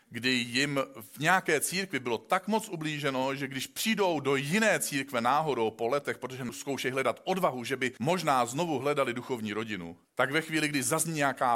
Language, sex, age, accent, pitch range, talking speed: Czech, male, 40-59, native, 115-150 Hz, 180 wpm